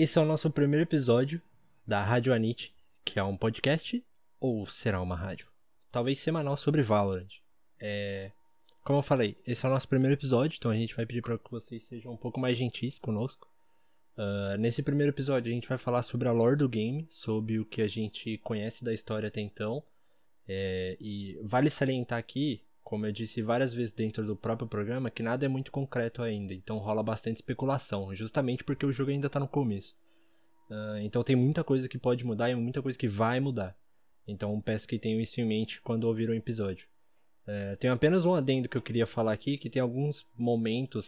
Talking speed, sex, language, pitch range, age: 195 wpm, male, Portuguese, 110-135 Hz, 20-39